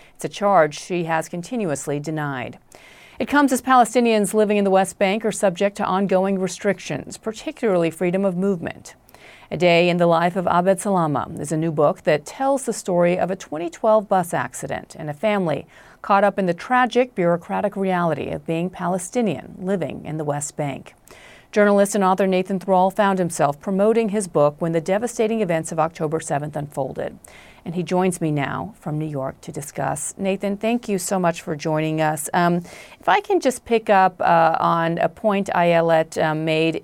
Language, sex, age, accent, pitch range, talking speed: English, female, 40-59, American, 160-195 Hz, 185 wpm